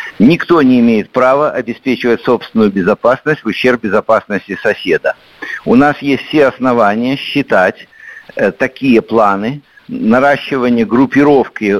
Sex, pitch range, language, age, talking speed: male, 115-150 Hz, Russian, 60-79, 110 wpm